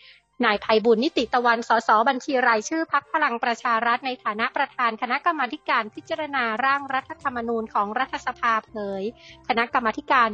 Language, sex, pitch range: Thai, female, 220-260 Hz